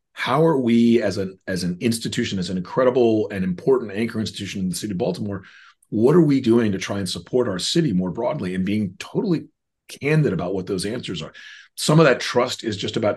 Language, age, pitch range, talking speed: English, 30-49, 100-125 Hz, 220 wpm